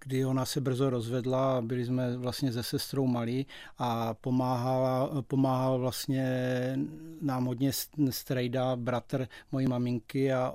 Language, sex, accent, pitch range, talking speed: Czech, male, native, 130-140 Hz, 125 wpm